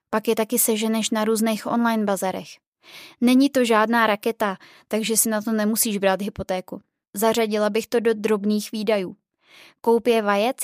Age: 20-39